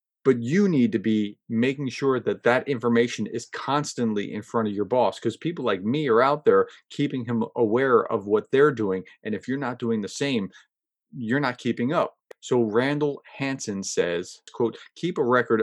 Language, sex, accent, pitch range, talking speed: English, male, American, 115-145 Hz, 190 wpm